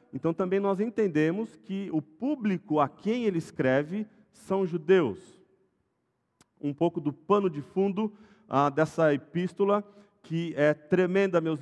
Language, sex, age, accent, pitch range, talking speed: Portuguese, male, 40-59, Brazilian, 130-185 Hz, 135 wpm